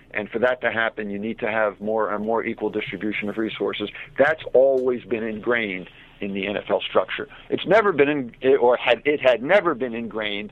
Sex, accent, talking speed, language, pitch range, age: male, American, 200 wpm, English, 105-135 Hz, 50-69